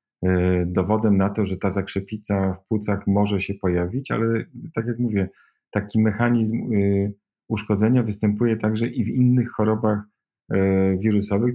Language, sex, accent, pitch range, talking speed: Polish, male, native, 95-110 Hz, 130 wpm